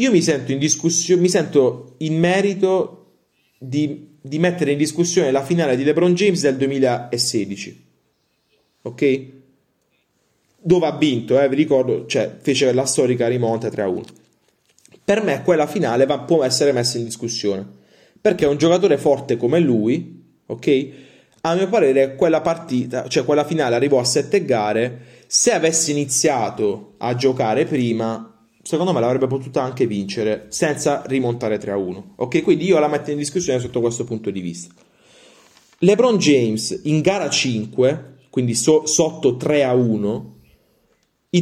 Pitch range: 120-155 Hz